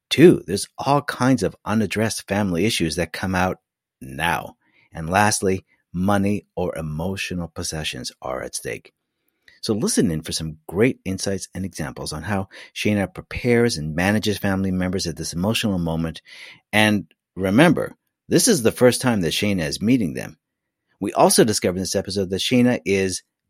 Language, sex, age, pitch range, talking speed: English, male, 50-69, 90-115 Hz, 160 wpm